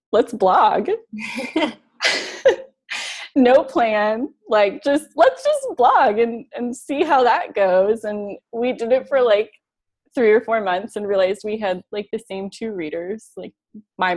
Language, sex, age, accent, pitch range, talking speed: English, female, 20-39, American, 185-245 Hz, 155 wpm